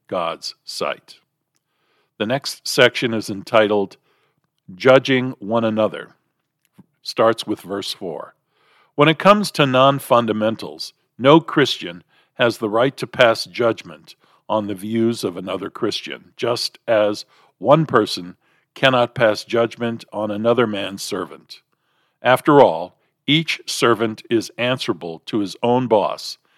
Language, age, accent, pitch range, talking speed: English, 50-69, American, 110-135 Hz, 125 wpm